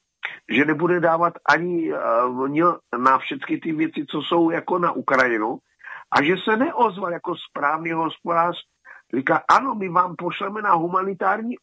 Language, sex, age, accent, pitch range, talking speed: Czech, male, 50-69, native, 165-225 Hz, 145 wpm